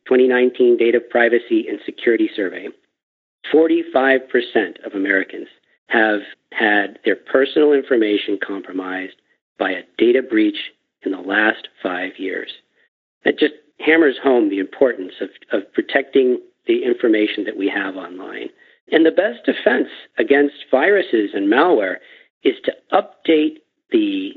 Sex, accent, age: male, American, 50-69